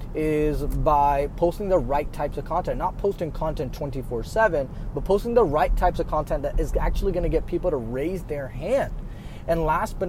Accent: American